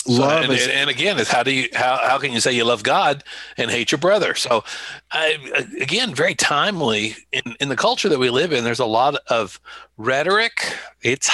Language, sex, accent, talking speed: English, male, American, 210 wpm